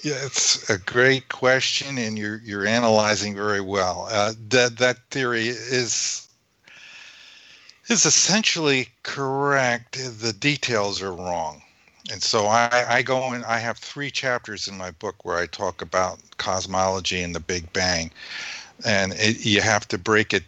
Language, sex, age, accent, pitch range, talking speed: English, male, 50-69, American, 95-120 Hz, 150 wpm